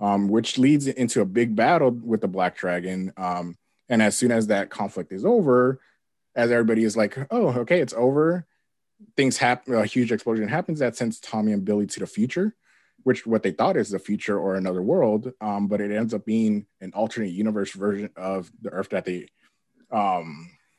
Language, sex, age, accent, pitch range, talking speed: English, male, 20-39, American, 95-120 Hz, 195 wpm